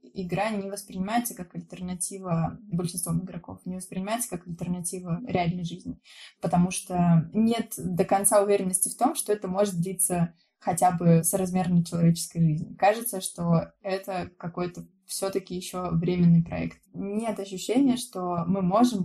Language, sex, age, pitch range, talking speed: Russian, female, 20-39, 175-195 Hz, 140 wpm